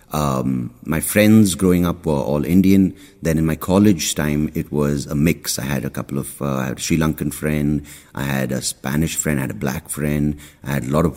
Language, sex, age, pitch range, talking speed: English, male, 30-49, 65-90 Hz, 235 wpm